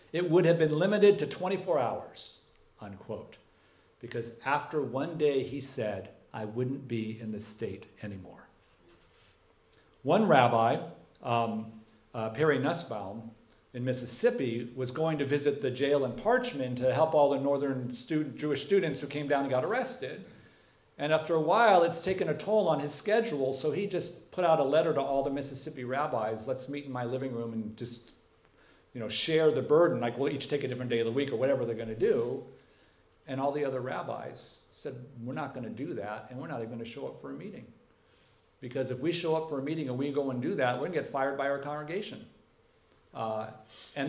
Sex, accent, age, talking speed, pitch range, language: male, American, 50-69, 205 wpm, 115-145 Hz, English